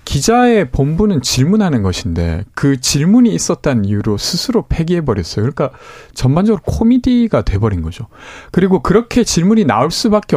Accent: native